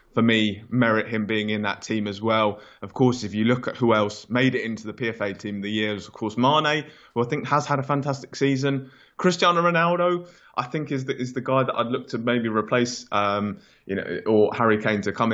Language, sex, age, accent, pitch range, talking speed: English, male, 20-39, British, 105-125 Hz, 240 wpm